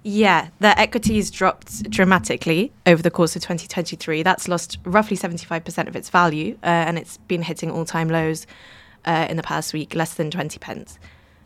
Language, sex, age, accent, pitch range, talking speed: English, female, 20-39, British, 160-180 Hz, 185 wpm